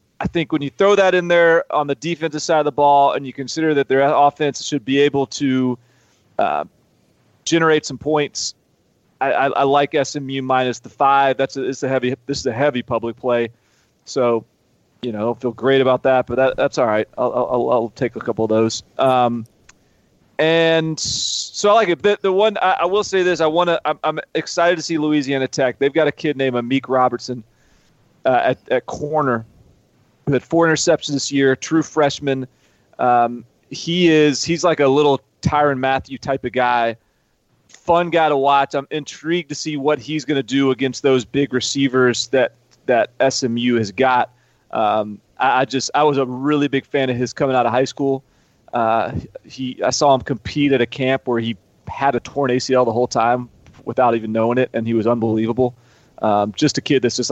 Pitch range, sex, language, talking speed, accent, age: 125-150 Hz, male, English, 200 wpm, American, 30-49